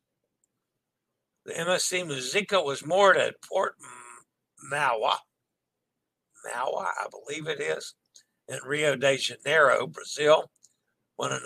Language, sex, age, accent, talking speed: English, male, 60-79, American, 100 wpm